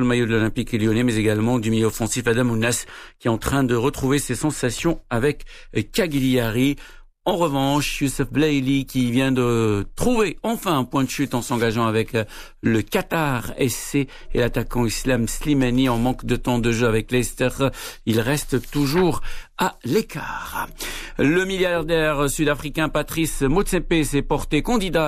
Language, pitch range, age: Arabic, 120-145 Hz, 60-79